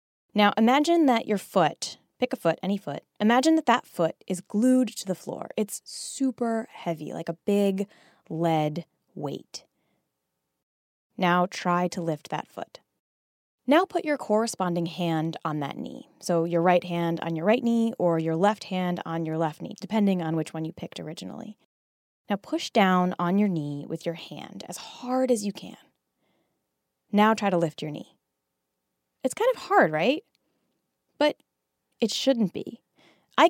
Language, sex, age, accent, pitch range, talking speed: English, female, 20-39, American, 175-260 Hz, 170 wpm